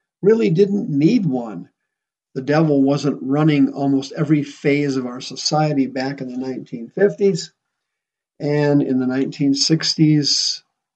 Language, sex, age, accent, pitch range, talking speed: English, male, 50-69, American, 135-160 Hz, 120 wpm